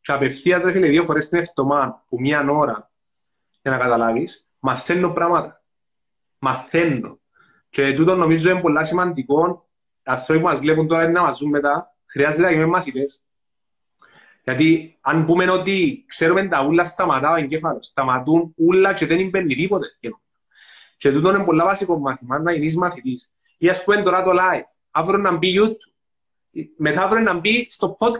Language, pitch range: Greek, 155-215 Hz